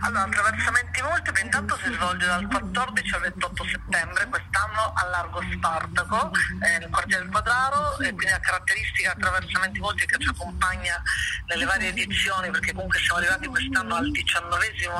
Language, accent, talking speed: Italian, native, 155 wpm